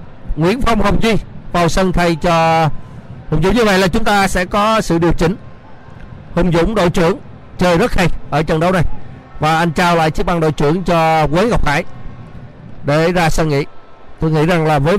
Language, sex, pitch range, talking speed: Vietnamese, male, 145-180 Hz, 210 wpm